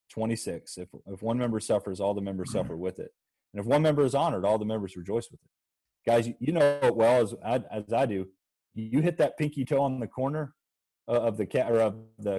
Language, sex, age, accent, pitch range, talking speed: English, male, 30-49, American, 110-150 Hz, 230 wpm